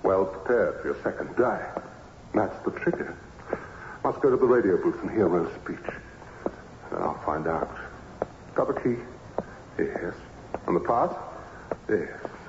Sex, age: female, 60-79